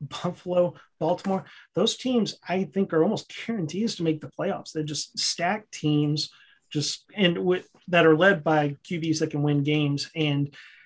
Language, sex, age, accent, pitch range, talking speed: English, male, 30-49, American, 150-180 Hz, 165 wpm